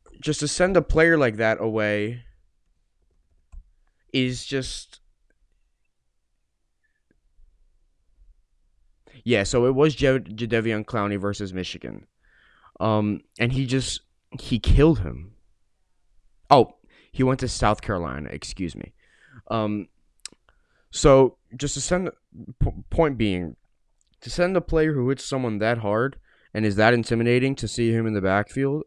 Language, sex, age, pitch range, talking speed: English, male, 20-39, 90-130 Hz, 125 wpm